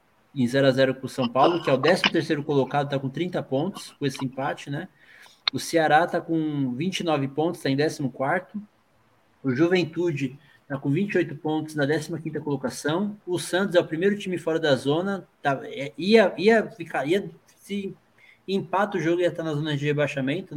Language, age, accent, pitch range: Portuguese, 20-39, Brazilian, 140-175 Hz